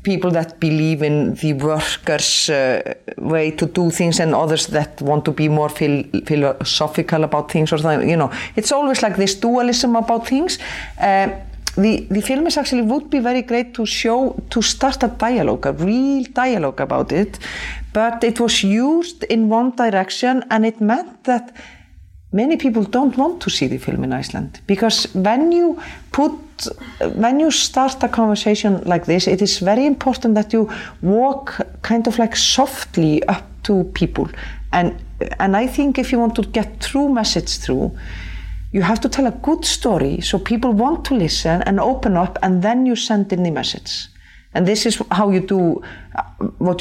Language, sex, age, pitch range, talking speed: English, female, 40-59, 170-245 Hz, 180 wpm